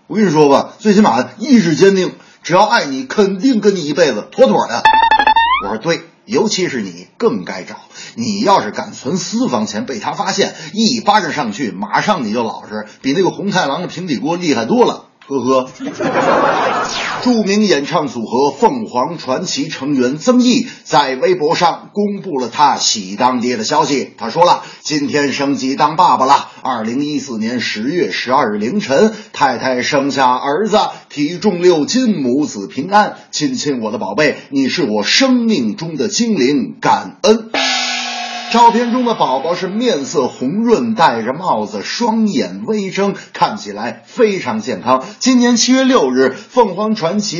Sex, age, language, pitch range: male, 30-49, Chinese, 150-235 Hz